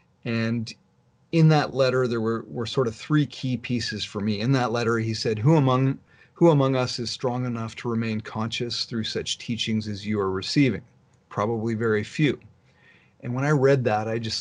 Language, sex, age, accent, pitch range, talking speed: English, male, 40-59, American, 110-125 Hz, 190 wpm